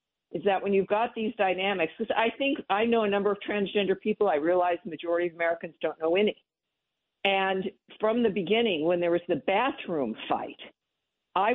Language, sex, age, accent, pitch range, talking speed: English, female, 50-69, American, 180-230 Hz, 190 wpm